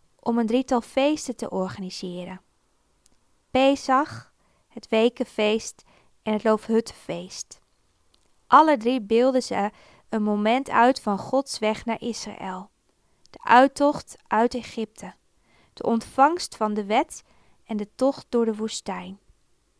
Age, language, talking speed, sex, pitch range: 20-39, Dutch, 120 wpm, female, 205-245 Hz